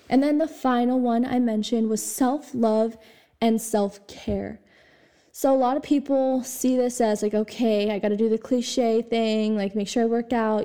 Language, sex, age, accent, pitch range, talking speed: English, female, 10-29, American, 210-245 Hz, 190 wpm